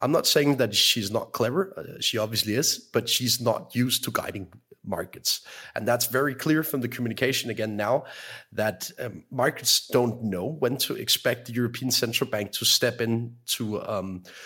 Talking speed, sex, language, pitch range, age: 185 wpm, male, English, 100-125 Hz, 30-49